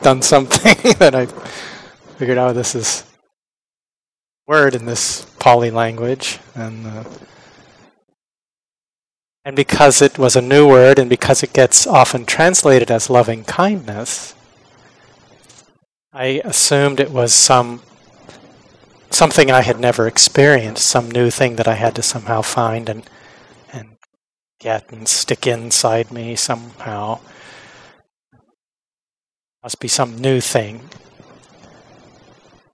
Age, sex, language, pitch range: 30-49, male, English, 115-135 Hz